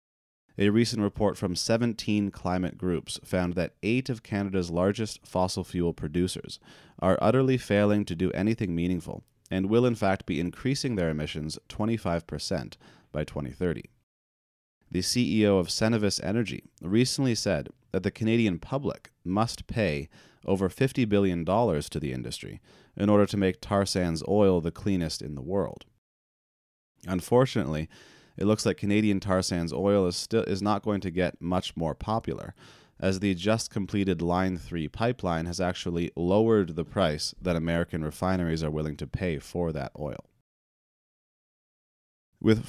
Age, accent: 30-49, American